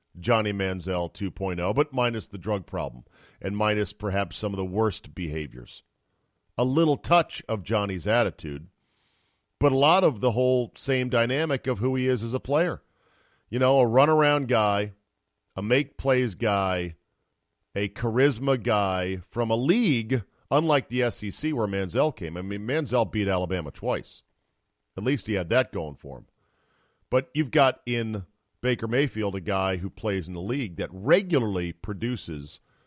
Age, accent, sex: 40-59, American, male